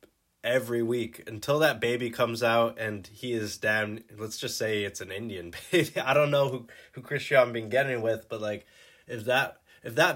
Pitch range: 115-135 Hz